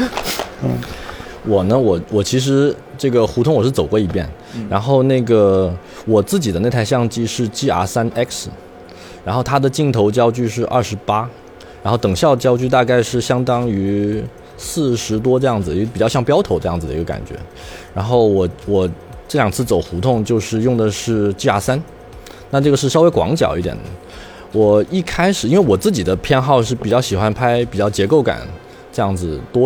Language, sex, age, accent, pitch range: Chinese, male, 20-39, native, 95-125 Hz